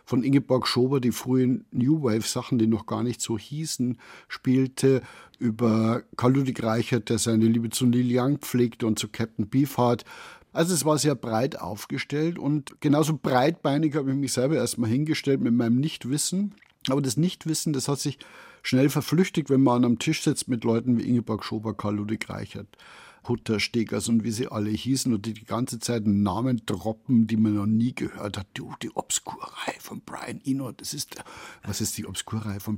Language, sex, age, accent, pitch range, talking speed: German, male, 60-79, German, 110-140 Hz, 190 wpm